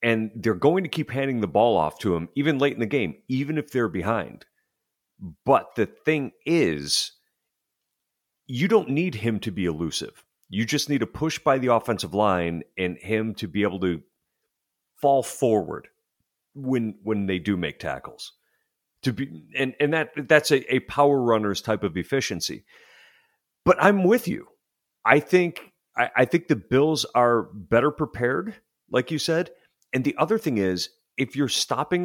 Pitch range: 100-145 Hz